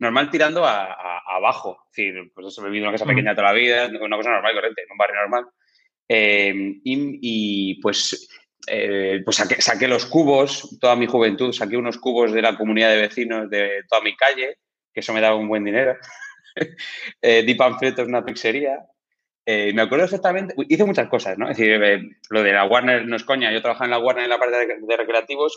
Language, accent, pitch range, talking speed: Spanish, Spanish, 105-140 Hz, 210 wpm